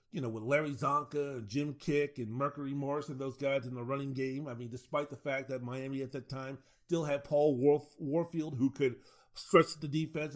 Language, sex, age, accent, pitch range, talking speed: English, male, 40-59, American, 130-165 Hz, 215 wpm